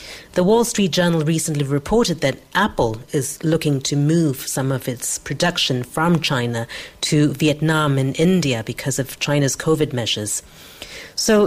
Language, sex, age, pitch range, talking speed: English, female, 40-59, 135-165 Hz, 145 wpm